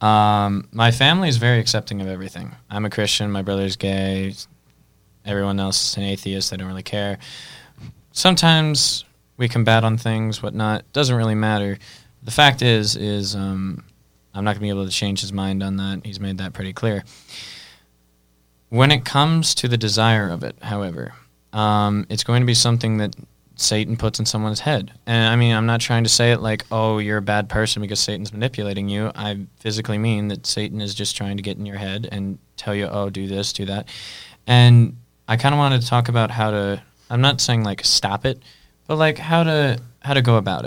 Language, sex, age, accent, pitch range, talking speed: English, male, 20-39, American, 100-115 Hz, 205 wpm